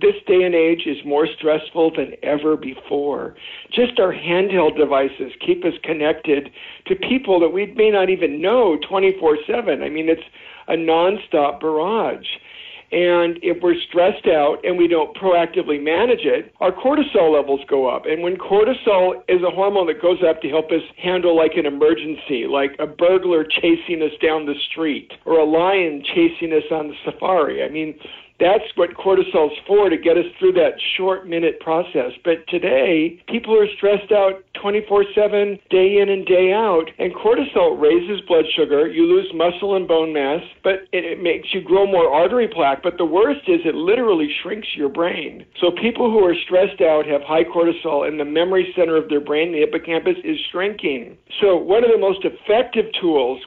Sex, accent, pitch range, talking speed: male, American, 160-260 Hz, 180 wpm